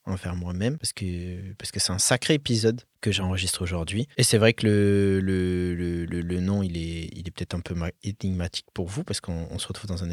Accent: French